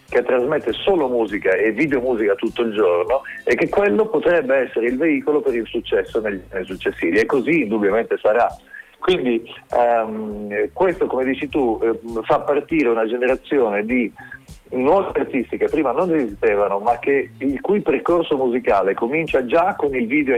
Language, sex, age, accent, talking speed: Italian, male, 40-59, native, 160 wpm